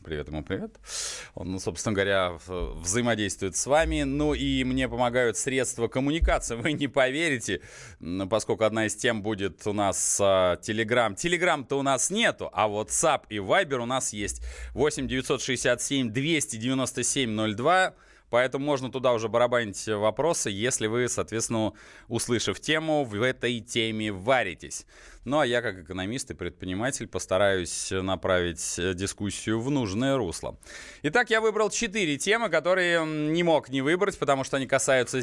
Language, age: Russian, 20-39